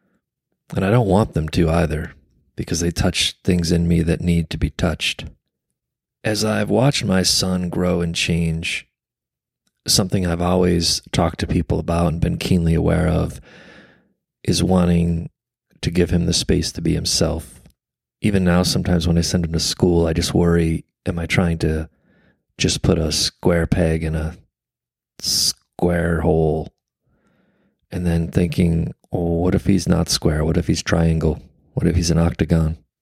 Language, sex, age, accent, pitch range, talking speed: English, male, 30-49, American, 80-90 Hz, 165 wpm